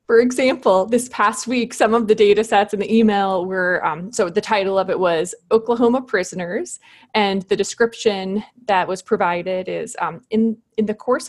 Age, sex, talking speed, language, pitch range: 20-39, female, 185 wpm, English, 190-220 Hz